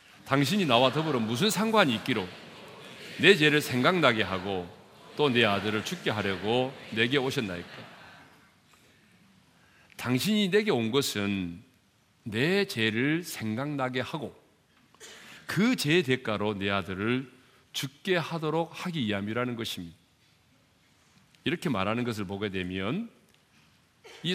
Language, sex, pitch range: Korean, male, 100-140 Hz